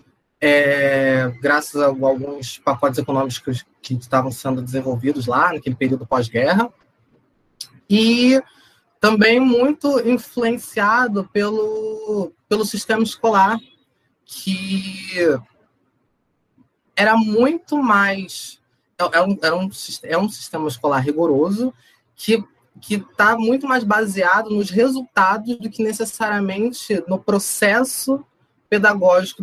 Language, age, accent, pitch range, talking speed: Portuguese, 20-39, Brazilian, 140-215 Hz, 105 wpm